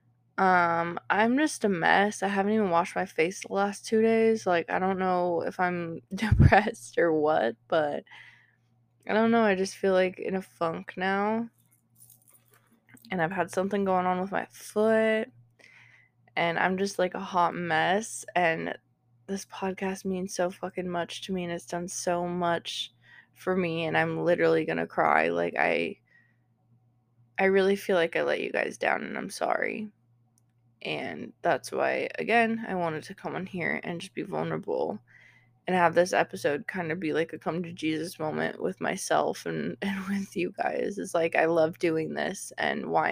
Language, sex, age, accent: English, female, 20-39, American